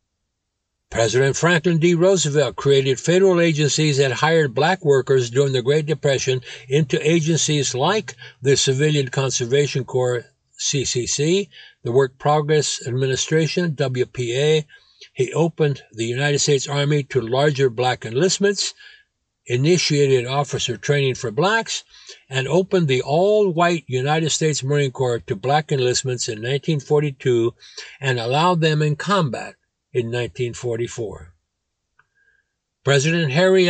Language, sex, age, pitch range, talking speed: English, male, 60-79, 130-160 Hz, 115 wpm